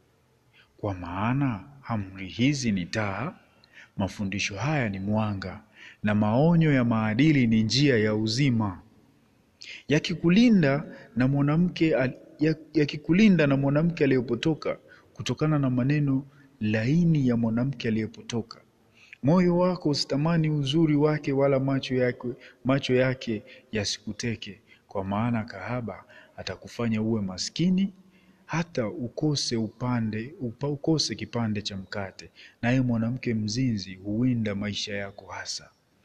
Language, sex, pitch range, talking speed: Swahili, male, 110-140 Hz, 110 wpm